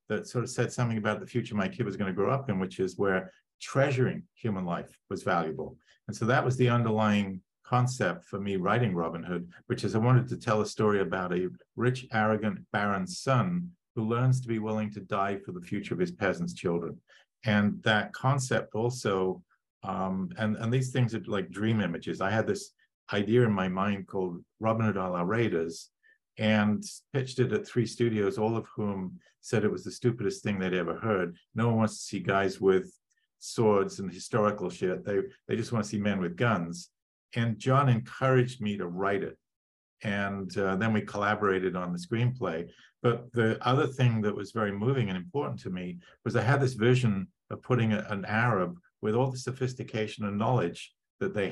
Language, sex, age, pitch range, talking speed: English, male, 50-69, 100-125 Hz, 200 wpm